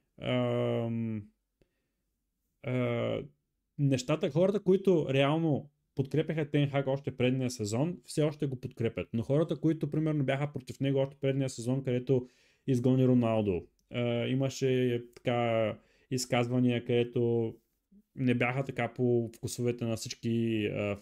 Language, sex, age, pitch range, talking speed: Bulgarian, male, 20-39, 120-150 Hz, 115 wpm